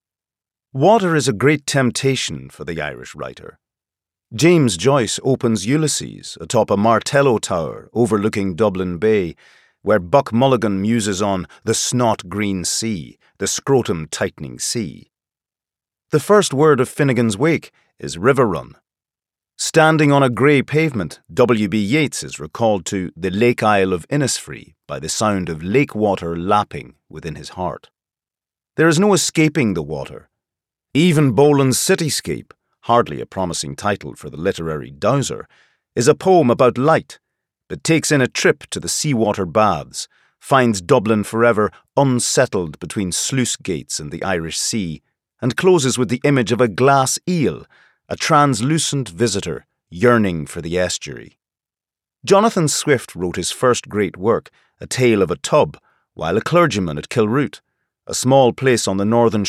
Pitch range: 100-140 Hz